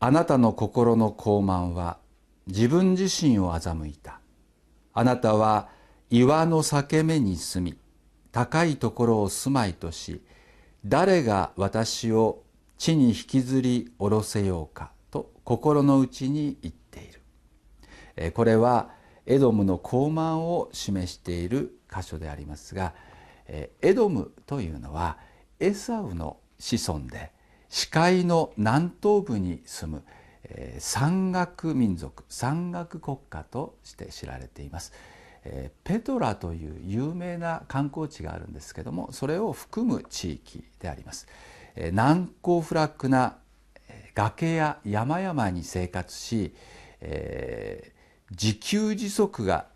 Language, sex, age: Japanese, male, 60-79